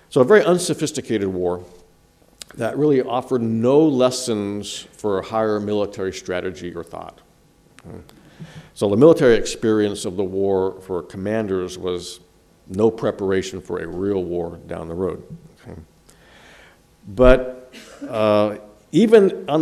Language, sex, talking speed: French, male, 125 wpm